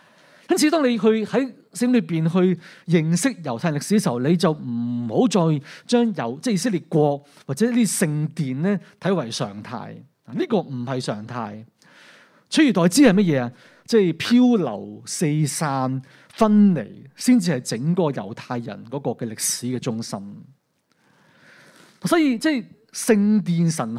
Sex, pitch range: male, 135-210 Hz